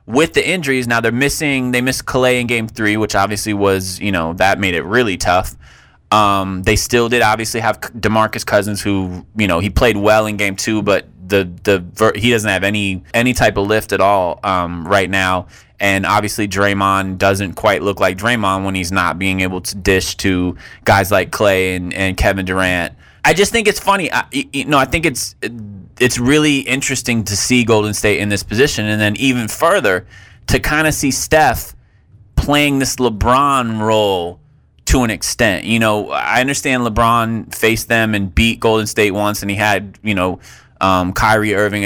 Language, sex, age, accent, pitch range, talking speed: English, male, 20-39, American, 95-120 Hz, 190 wpm